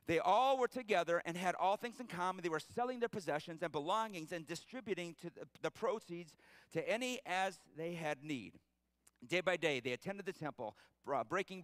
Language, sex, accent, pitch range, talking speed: English, male, American, 155-210 Hz, 190 wpm